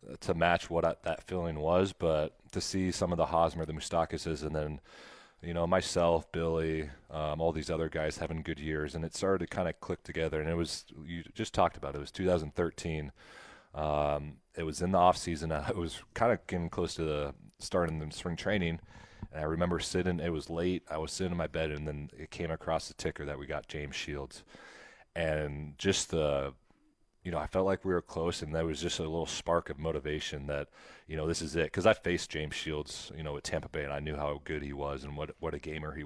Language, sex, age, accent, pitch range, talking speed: English, male, 30-49, American, 75-85 Hz, 235 wpm